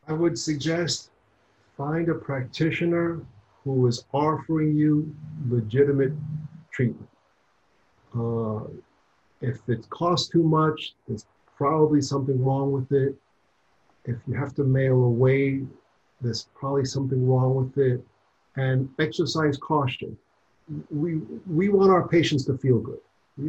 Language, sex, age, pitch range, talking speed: English, male, 50-69, 115-150 Hz, 125 wpm